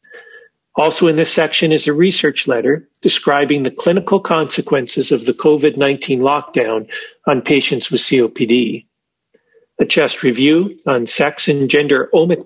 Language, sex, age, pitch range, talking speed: English, male, 50-69, 130-180 Hz, 135 wpm